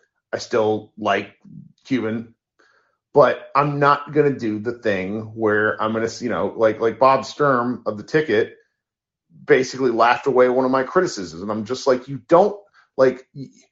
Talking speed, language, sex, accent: 170 wpm, English, male, American